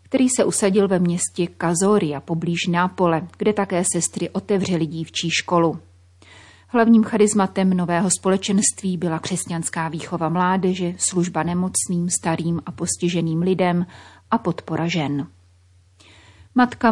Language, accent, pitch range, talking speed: Czech, native, 170-195 Hz, 115 wpm